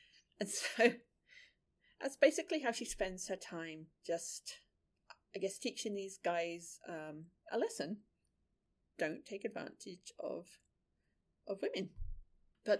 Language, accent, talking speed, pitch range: English, British, 115 wpm, 175-240 Hz